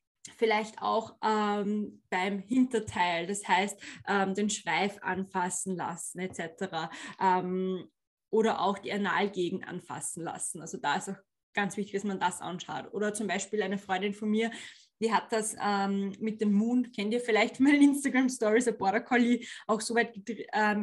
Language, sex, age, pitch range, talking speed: German, female, 20-39, 195-225 Hz, 160 wpm